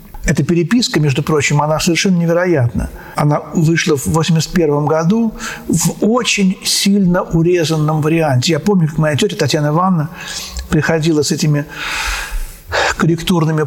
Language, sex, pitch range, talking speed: Russian, male, 145-180 Hz, 125 wpm